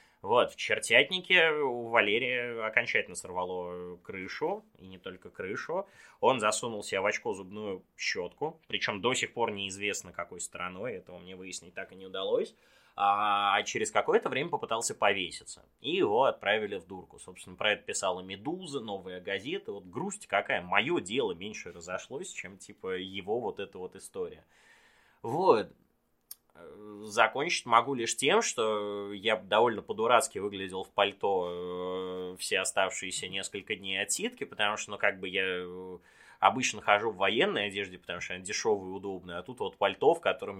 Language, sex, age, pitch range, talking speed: Russian, male, 20-39, 95-150 Hz, 155 wpm